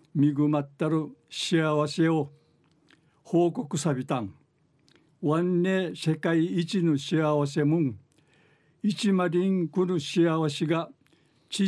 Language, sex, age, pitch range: Japanese, male, 60-79, 145-170 Hz